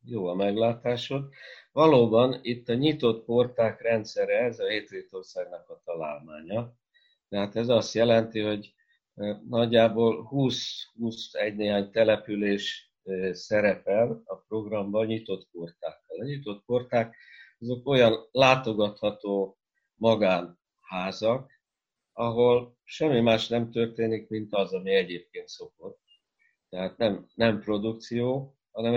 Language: Hungarian